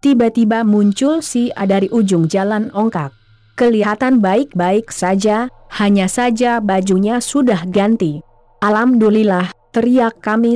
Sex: female